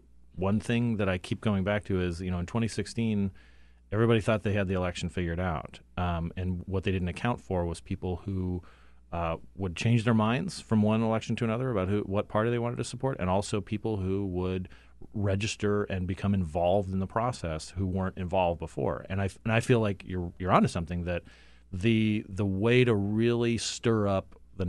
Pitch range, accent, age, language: 90-110 Hz, American, 30-49, English